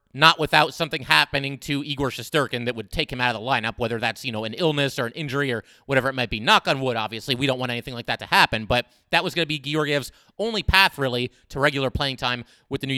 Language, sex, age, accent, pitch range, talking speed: English, male, 30-49, American, 135-175 Hz, 270 wpm